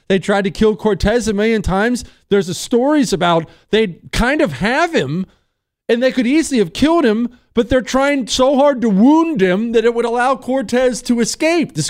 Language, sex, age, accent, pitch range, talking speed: English, male, 40-59, American, 140-210 Hz, 200 wpm